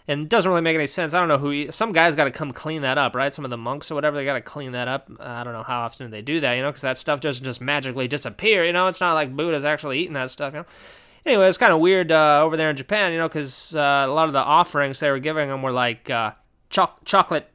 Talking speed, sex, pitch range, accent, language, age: 295 wpm, male, 135-165 Hz, American, English, 20-39